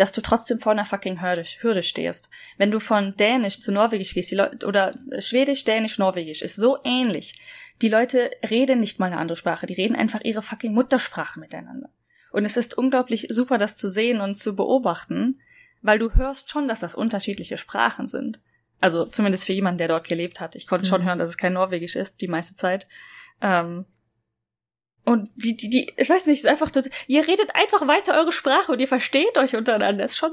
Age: 10-29